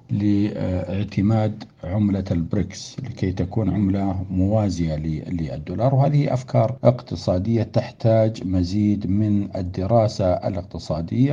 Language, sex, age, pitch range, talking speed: Arabic, male, 60-79, 95-125 Hz, 85 wpm